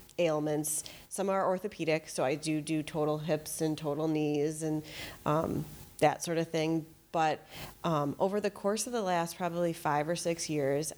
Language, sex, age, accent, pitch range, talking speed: English, female, 30-49, American, 150-175 Hz, 175 wpm